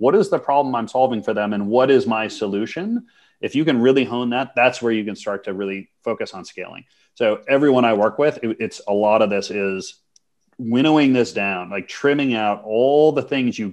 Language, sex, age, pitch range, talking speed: English, male, 30-49, 105-135 Hz, 220 wpm